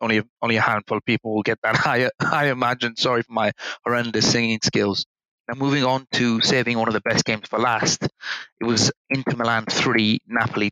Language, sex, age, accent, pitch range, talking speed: English, male, 30-49, British, 115-135 Hz, 200 wpm